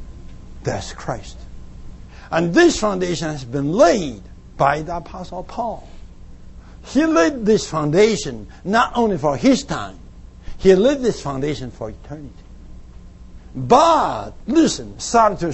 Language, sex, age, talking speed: English, male, 60-79, 120 wpm